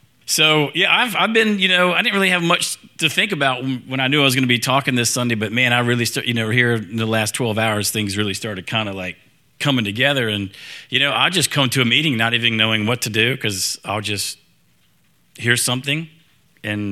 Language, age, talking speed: English, 40-59, 240 wpm